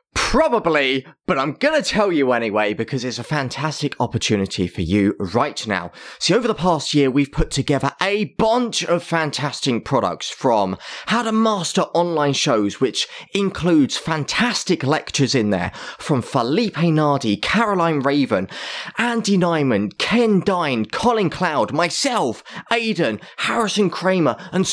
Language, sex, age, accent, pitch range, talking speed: English, male, 20-39, British, 145-195 Hz, 140 wpm